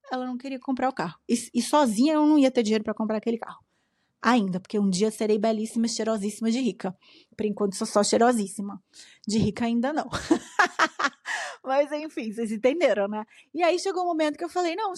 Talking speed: 200 wpm